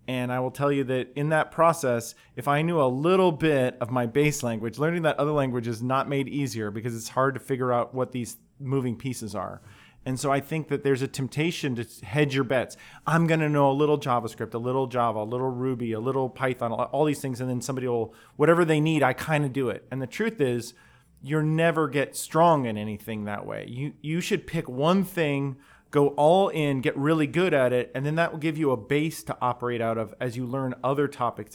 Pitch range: 125-150 Hz